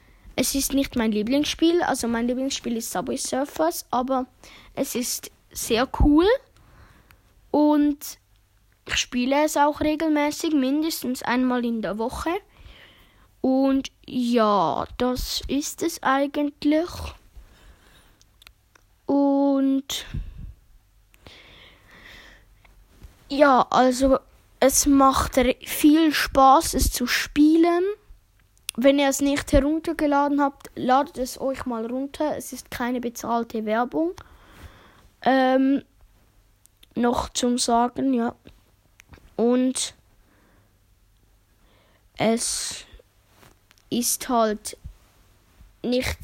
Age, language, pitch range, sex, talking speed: 10-29, German, 220-285 Hz, female, 90 wpm